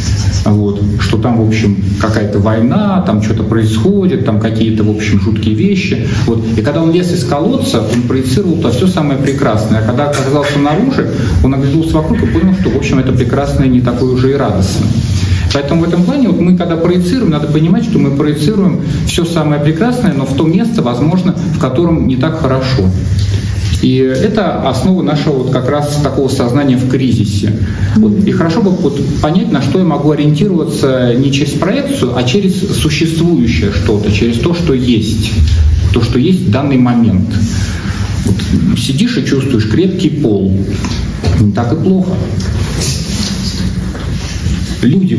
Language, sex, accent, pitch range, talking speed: Russian, male, native, 105-150 Hz, 160 wpm